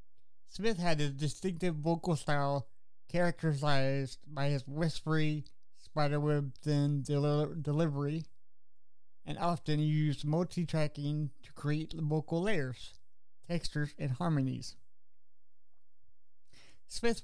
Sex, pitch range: male, 130-165 Hz